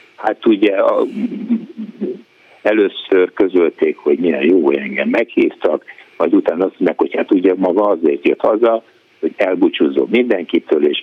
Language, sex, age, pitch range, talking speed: Hungarian, male, 60-79, 355-445 Hz, 140 wpm